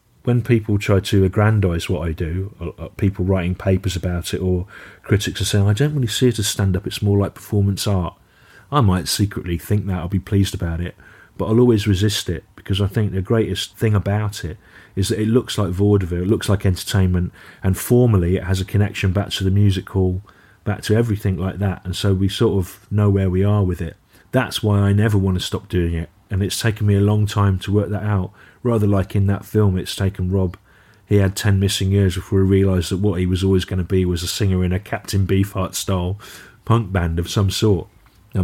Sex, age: male, 30-49